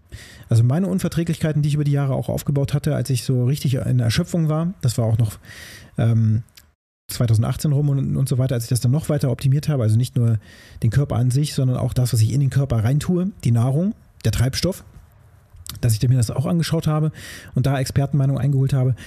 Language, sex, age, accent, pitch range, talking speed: German, male, 30-49, German, 115-145 Hz, 215 wpm